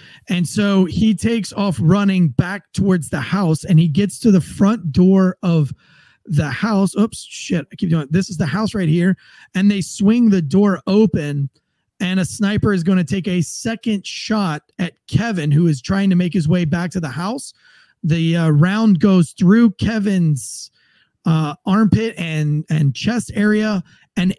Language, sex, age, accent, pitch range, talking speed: English, male, 30-49, American, 160-200 Hz, 180 wpm